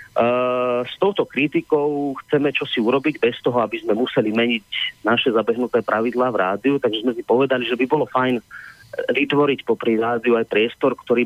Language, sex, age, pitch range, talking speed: Slovak, male, 30-49, 115-135 Hz, 170 wpm